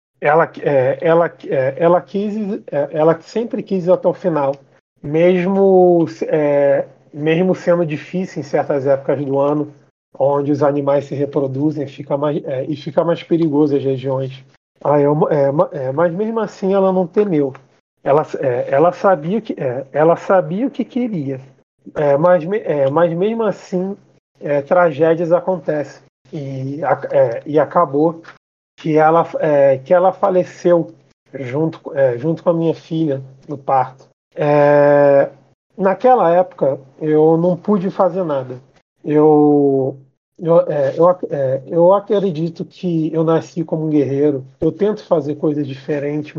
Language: Portuguese